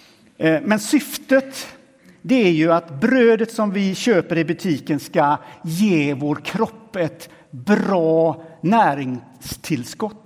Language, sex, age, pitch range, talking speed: Swedish, male, 60-79, 160-215 Hz, 110 wpm